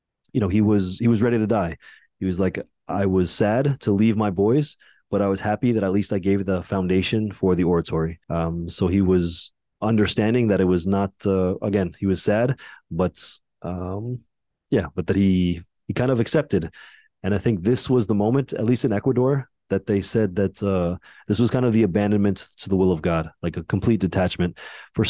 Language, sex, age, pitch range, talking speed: English, male, 30-49, 95-115 Hz, 215 wpm